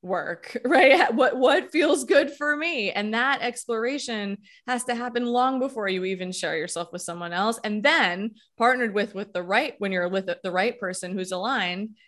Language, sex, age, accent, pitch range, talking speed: English, female, 20-39, American, 180-225 Hz, 190 wpm